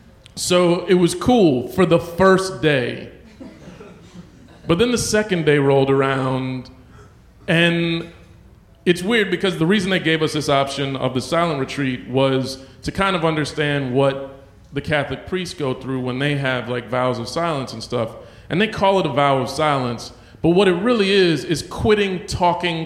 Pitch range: 145-195 Hz